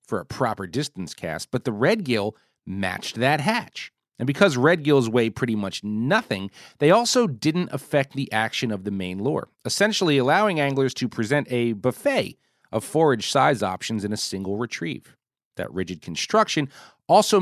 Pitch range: 110-155 Hz